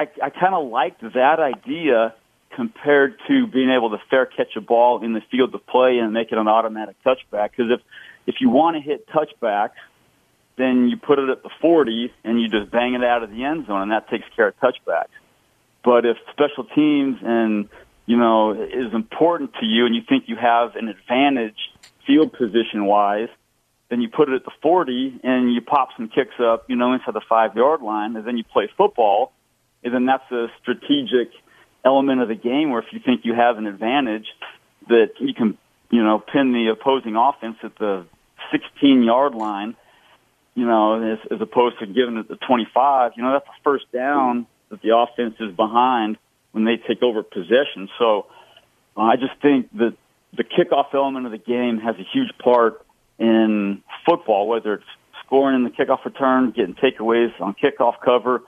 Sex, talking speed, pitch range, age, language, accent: male, 195 wpm, 110-130 Hz, 40-59, English, American